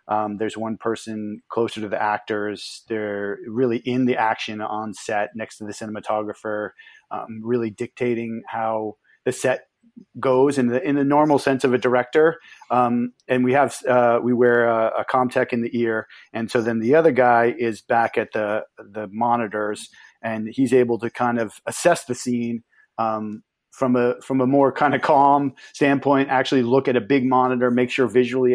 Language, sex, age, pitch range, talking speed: English, male, 40-59, 110-125 Hz, 185 wpm